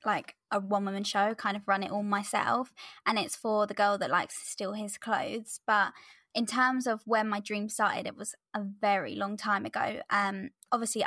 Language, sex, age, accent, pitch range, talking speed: English, female, 20-39, British, 205-235 Hz, 210 wpm